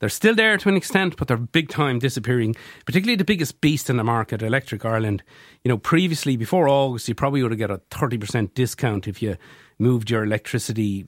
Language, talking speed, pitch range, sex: English, 205 wpm, 105-135 Hz, male